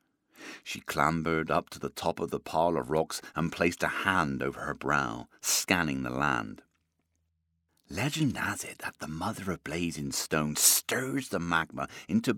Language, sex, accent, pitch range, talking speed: English, male, British, 80-90 Hz, 165 wpm